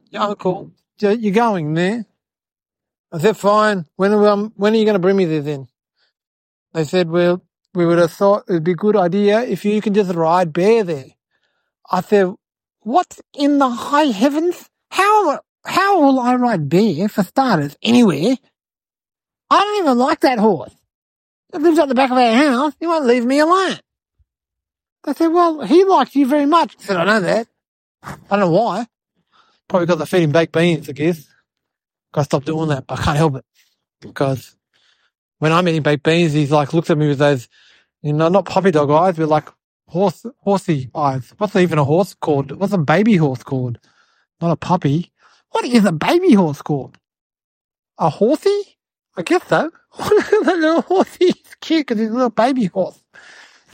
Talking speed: 190 wpm